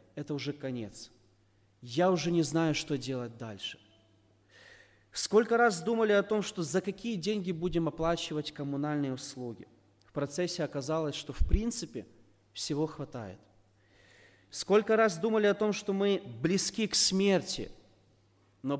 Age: 30-49